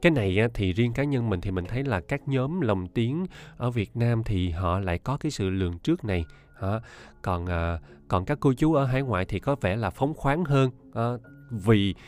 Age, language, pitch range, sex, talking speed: 20-39, Vietnamese, 95-135 Hz, male, 215 wpm